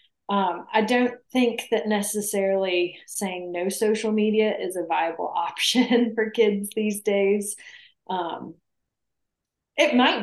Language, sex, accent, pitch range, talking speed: English, female, American, 190-235 Hz, 125 wpm